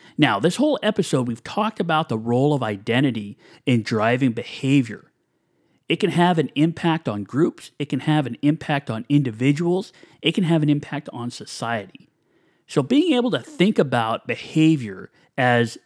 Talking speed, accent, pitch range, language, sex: 165 wpm, American, 120-155 Hz, English, male